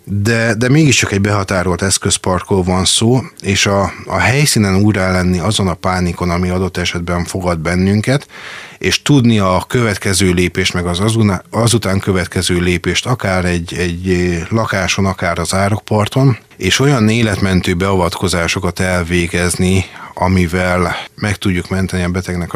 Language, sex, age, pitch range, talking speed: Hungarian, male, 30-49, 90-105 Hz, 135 wpm